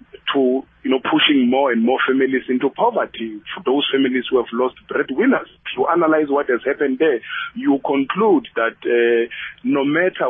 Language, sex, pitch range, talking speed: English, male, 130-200 Hz, 170 wpm